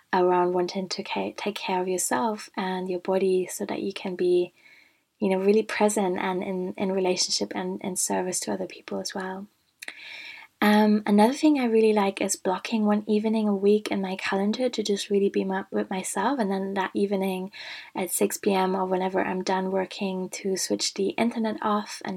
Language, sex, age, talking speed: English, female, 20-39, 190 wpm